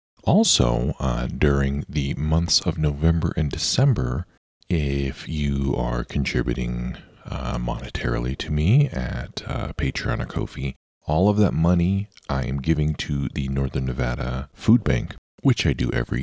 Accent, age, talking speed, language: American, 40-59, 145 wpm, English